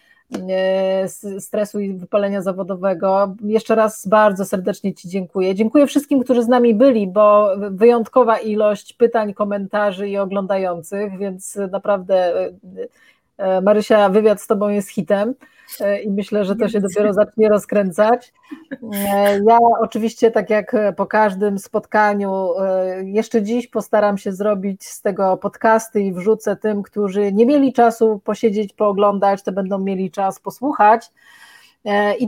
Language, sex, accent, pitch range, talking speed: Polish, female, native, 195-230 Hz, 130 wpm